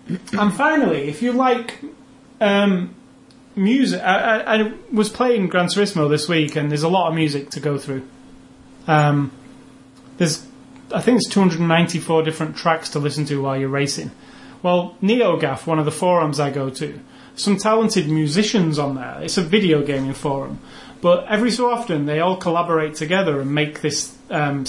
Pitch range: 145-185 Hz